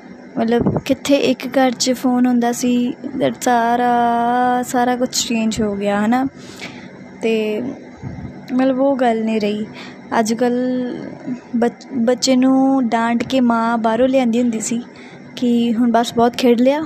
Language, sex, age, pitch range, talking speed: Punjabi, female, 20-39, 235-265 Hz, 135 wpm